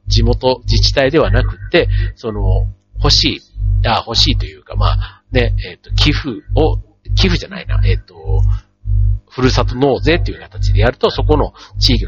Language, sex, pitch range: Japanese, male, 100-130 Hz